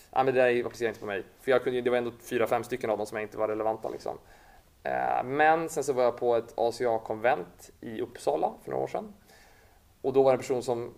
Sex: male